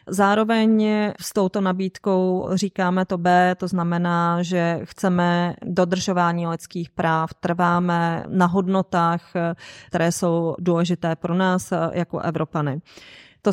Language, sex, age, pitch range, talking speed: Czech, female, 30-49, 170-190 Hz, 110 wpm